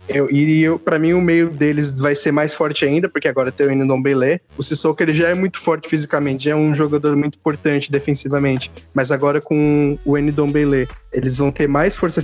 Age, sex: 20-39, male